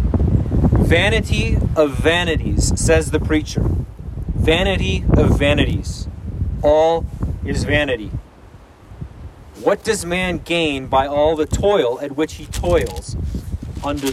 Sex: male